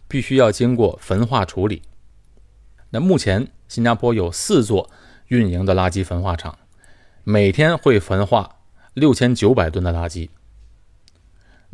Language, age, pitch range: Chinese, 30-49, 90-125 Hz